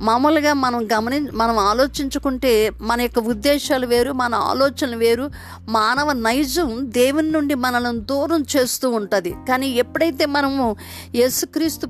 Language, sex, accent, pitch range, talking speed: Telugu, female, native, 220-280 Hz, 120 wpm